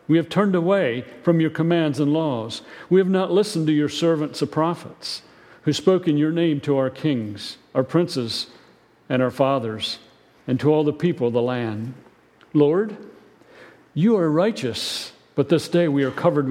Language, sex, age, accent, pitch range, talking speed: English, male, 50-69, American, 120-160 Hz, 180 wpm